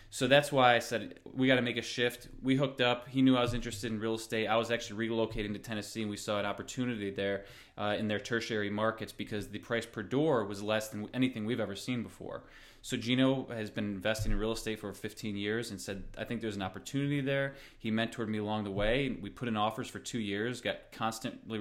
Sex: male